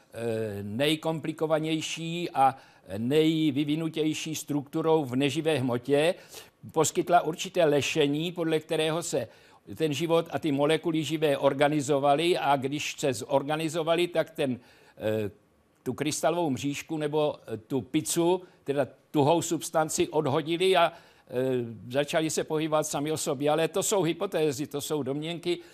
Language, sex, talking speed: Czech, male, 115 wpm